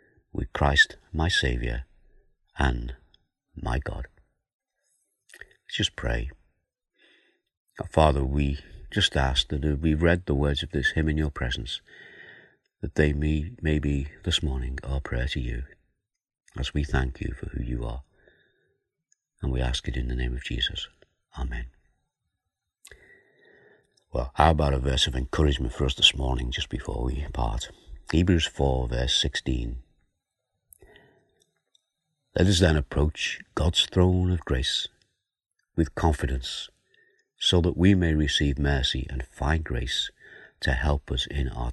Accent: British